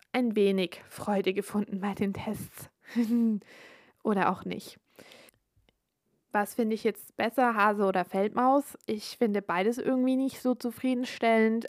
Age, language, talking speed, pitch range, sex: 20-39, German, 130 wpm, 200-235 Hz, female